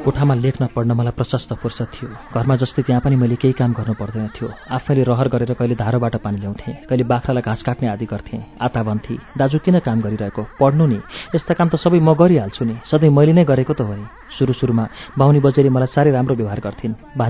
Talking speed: 50 wpm